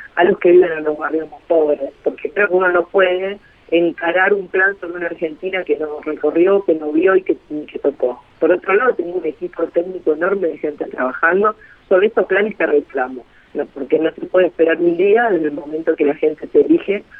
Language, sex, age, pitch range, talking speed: Spanish, female, 40-59, 155-200 Hz, 230 wpm